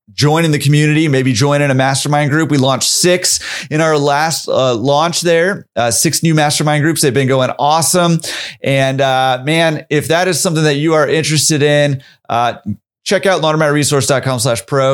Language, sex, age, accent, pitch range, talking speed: English, male, 30-49, American, 125-165 Hz, 185 wpm